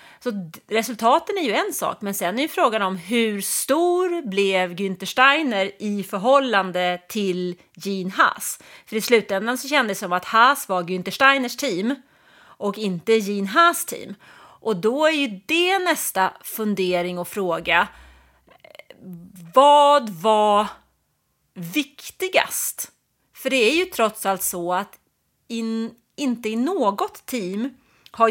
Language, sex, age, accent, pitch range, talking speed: English, female, 30-49, Swedish, 190-265 Hz, 140 wpm